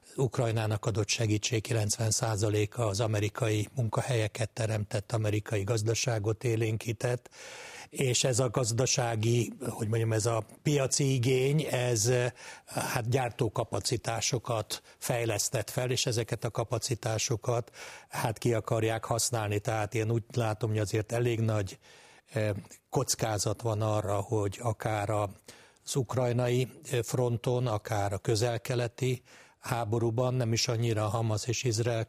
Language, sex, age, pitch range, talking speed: Hungarian, male, 60-79, 110-125 Hz, 115 wpm